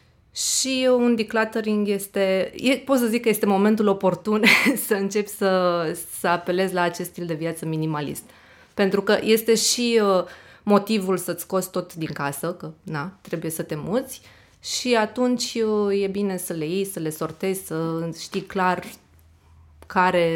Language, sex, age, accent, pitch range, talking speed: Romanian, female, 20-39, native, 170-220 Hz, 155 wpm